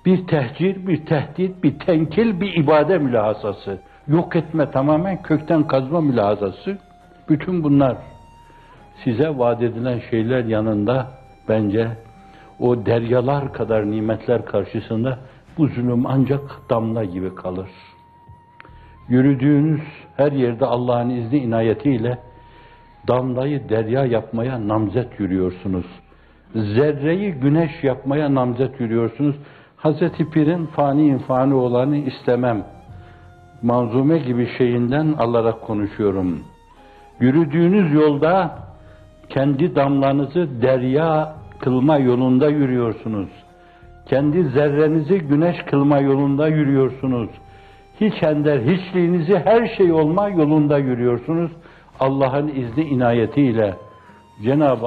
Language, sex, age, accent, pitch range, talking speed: Turkish, male, 60-79, native, 115-155 Hz, 95 wpm